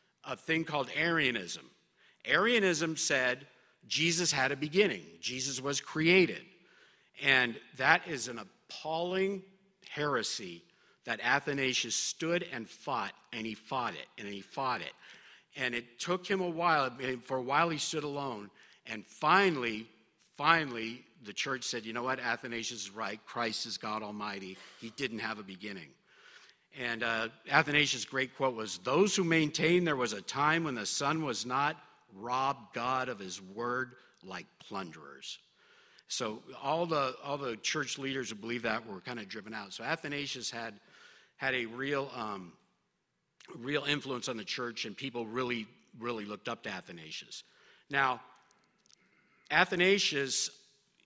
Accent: American